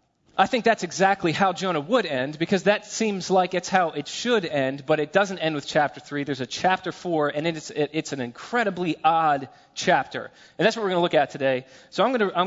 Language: English